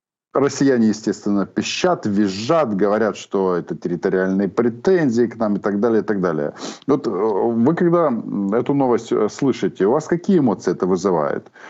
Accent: native